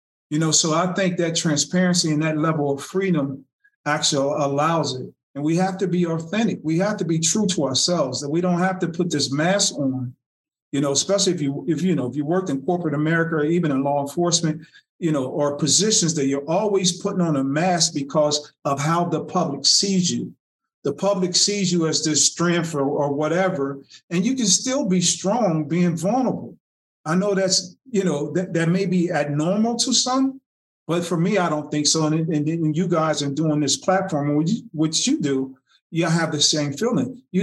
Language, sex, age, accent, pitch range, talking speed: English, male, 40-59, American, 150-185 Hz, 210 wpm